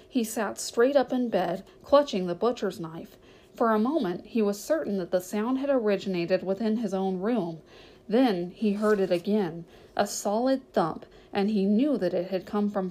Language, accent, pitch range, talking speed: English, American, 185-240 Hz, 190 wpm